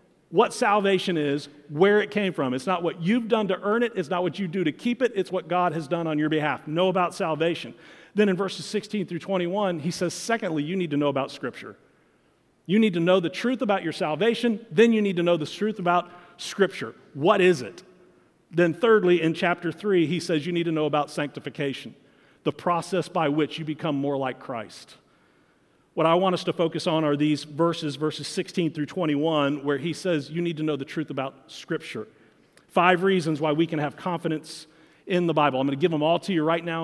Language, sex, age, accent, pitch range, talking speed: English, male, 40-59, American, 150-185 Hz, 225 wpm